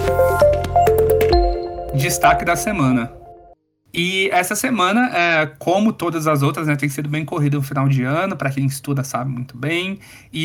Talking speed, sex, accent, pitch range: 155 wpm, male, Brazilian, 140-165 Hz